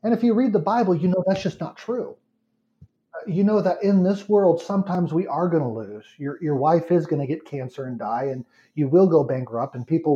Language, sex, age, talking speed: English, male, 40-59, 240 wpm